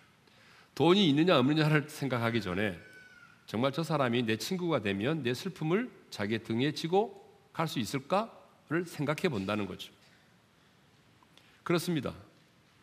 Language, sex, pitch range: Korean, male, 110-185 Hz